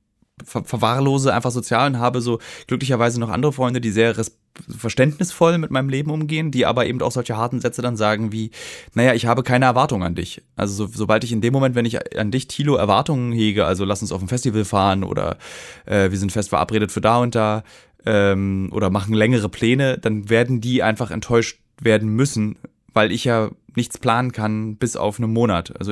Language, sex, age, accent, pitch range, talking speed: German, male, 20-39, German, 105-125 Hz, 205 wpm